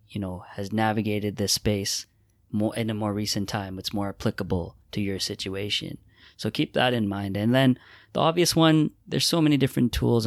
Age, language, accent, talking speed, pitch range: 20-39, English, American, 195 wpm, 105-125 Hz